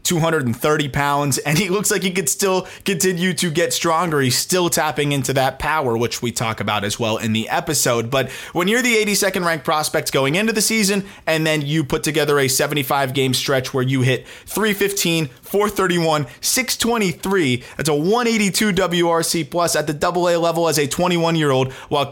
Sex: male